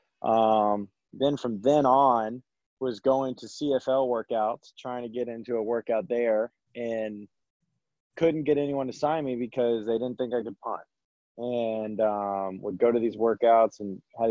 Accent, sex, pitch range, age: American, male, 105-120 Hz, 20-39